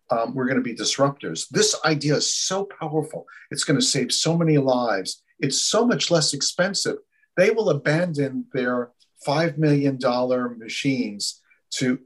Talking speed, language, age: 145 wpm, English, 50-69